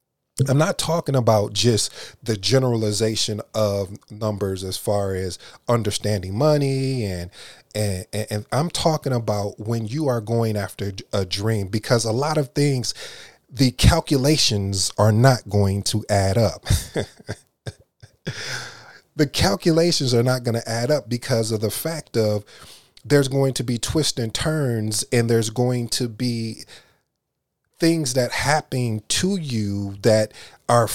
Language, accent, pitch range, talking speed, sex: English, American, 110-140 Hz, 140 wpm, male